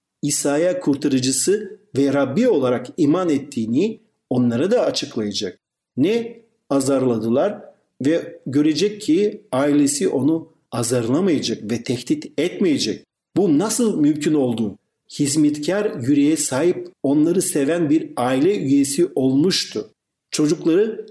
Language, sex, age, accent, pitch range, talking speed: Turkish, male, 50-69, native, 140-210 Hz, 100 wpm